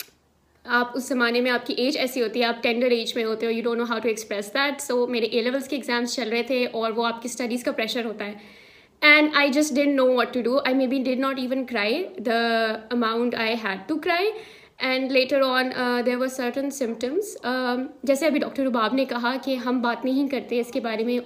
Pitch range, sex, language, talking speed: 235-280 Hz, female, Urdu, 220 wpm